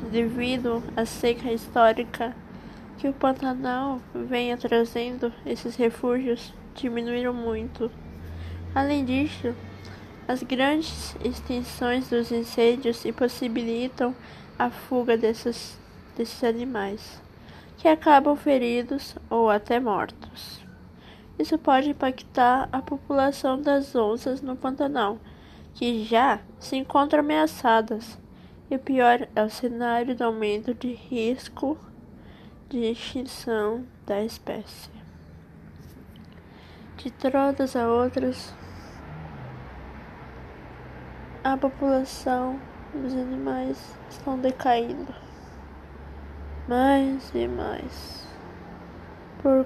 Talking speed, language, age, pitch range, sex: 90 wpm, Vietnamese, 20-39, 220-265 Hz, female